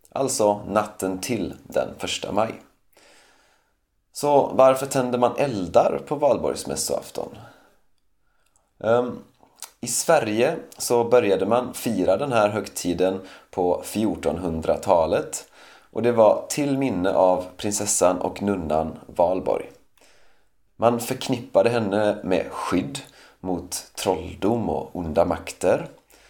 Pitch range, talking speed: 90-115 Hz, 105 wpm